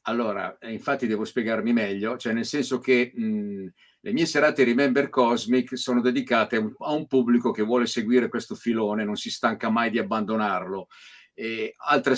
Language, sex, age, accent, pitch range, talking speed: Italian, male, 50-69, native, 115-150 Hz, 155 wpm